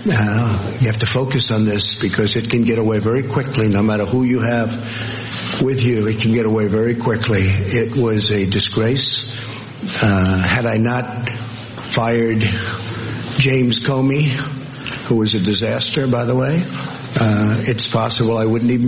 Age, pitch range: 50-69, 115-130 Hz